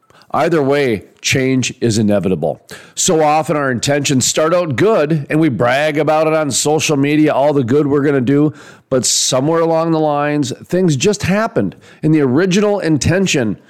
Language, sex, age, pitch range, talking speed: English, male, 40-59, 130-160 Hz, 165 wpm